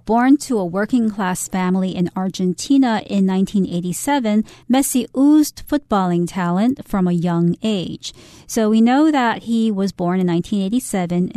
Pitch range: 180-230 Hz